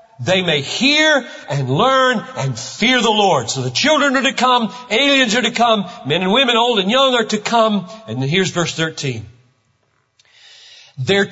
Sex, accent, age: male, American, 50-69